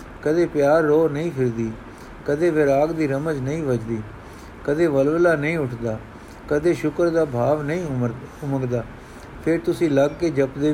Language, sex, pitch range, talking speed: Punjabi, male, 125-155 Hz, 150 wpm